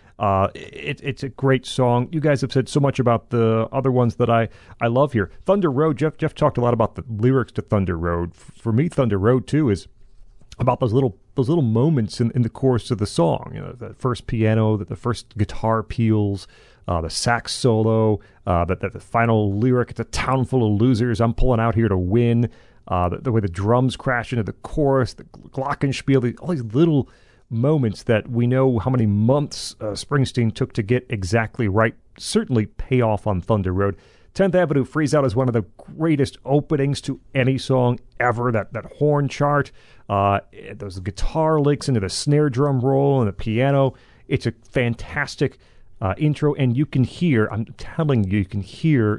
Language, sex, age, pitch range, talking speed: English, male, 40-59, 105-135 Hz, 200 wpm